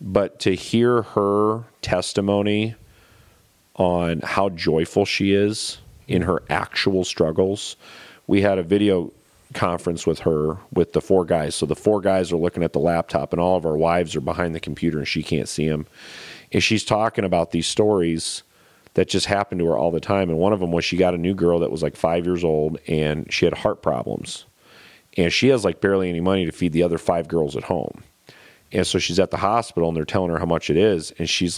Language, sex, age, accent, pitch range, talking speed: English, male, 40-59, American, 85-100 Hz, 215 wpm